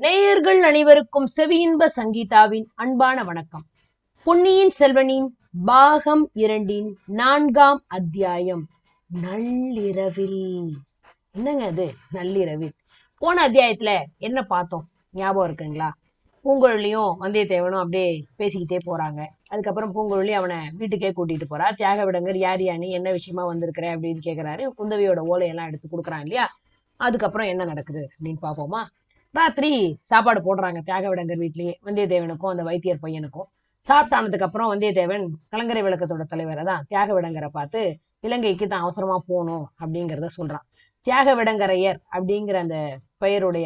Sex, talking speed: female, 115 wpm